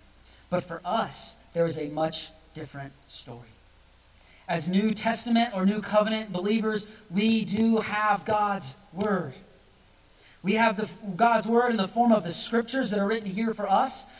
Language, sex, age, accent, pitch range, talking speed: English, male, 30-49, American, 155-220 Hz, 155 wpm